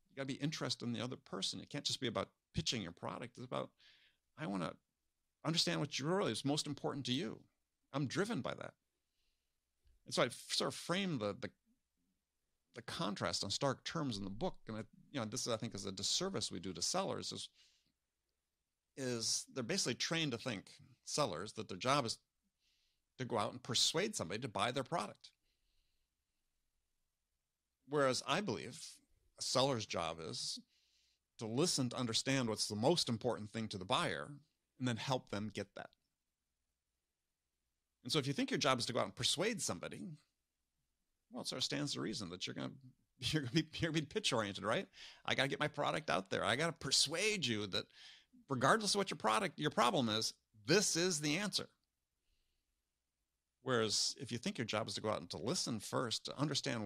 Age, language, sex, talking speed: 50-69, English, male, 195 wpm